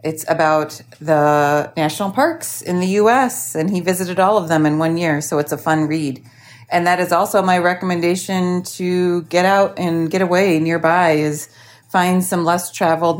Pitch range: 125-180 Hz